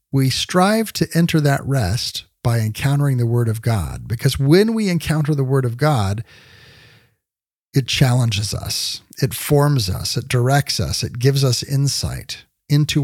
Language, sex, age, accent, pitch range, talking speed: English, male, 40-59, American, 110-140 Hz, 155 wpm